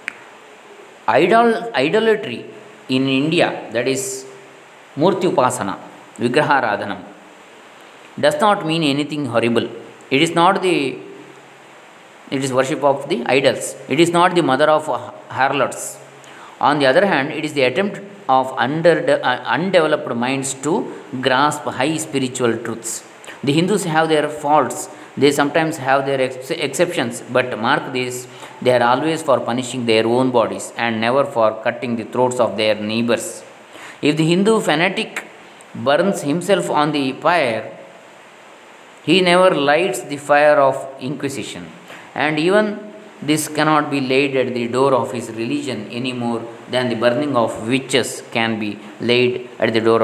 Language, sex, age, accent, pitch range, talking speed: Kannada, male, 20-39, native, 120-155 Hz, 145 wpm